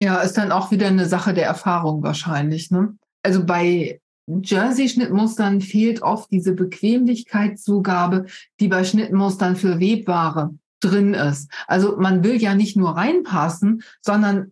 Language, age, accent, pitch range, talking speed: German, 50-69, German, 165-210 Hz, 135 wpm